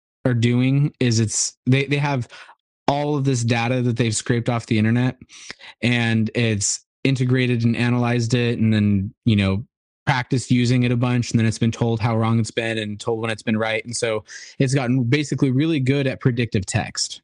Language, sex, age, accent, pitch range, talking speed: English, male, 20-39, American, 110-130 Hz, 200 wpm